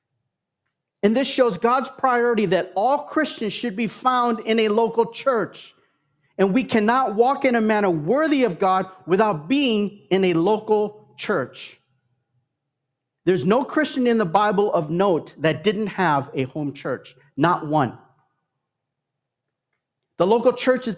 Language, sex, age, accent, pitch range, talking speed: English, male, 40-59, American, 160-225 Hz, 145 wpm